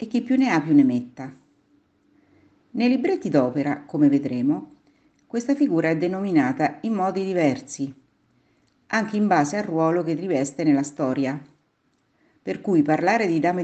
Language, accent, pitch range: Italian, native, 145-245 Hz